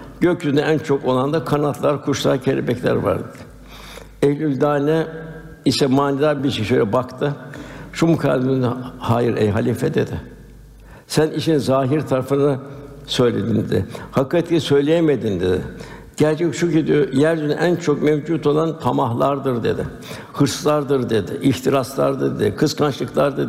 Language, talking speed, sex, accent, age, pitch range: Turkish, 125 wpm, male, native, 60-79, 120-150 Hz